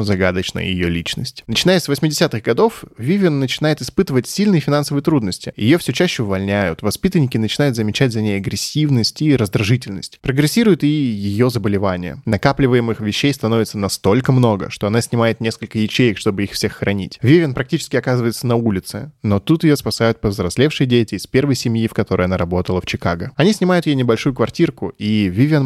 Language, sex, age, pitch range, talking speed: Russian, male, 10-29, 105-140 Hz, 165 wpm